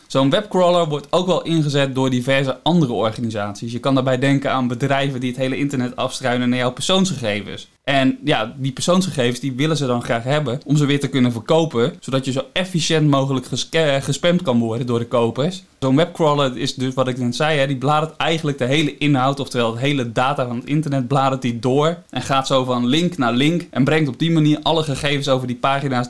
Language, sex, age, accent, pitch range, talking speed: Dutch, male, 20-39, Dutch, 125-150 Hz, 215 wpm